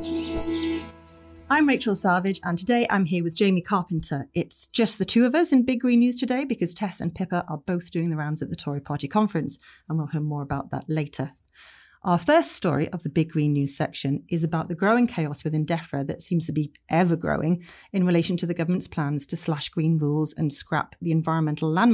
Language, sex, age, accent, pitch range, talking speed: English, female, 30-49, British, 150-185 Hz, 215 wpm